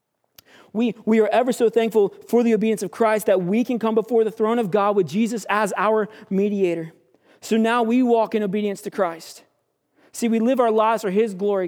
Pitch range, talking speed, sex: 185-225 Hz, 210 wpm, male